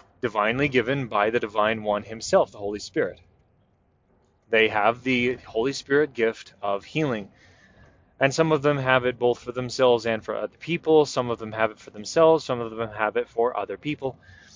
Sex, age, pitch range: male, 20-39, 110-135 Hz